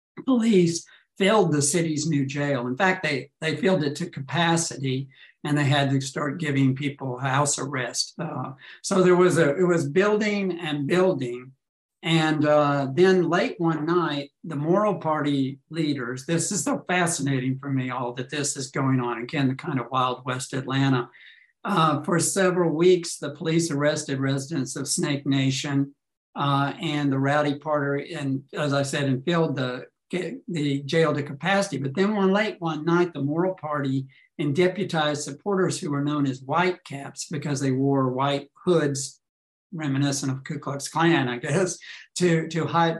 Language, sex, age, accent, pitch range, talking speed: English, male, 60-79, American, 135-170 Hz, 170 wpm